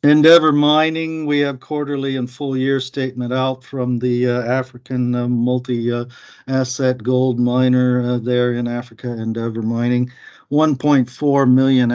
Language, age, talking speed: English, 50-69, 135 wpm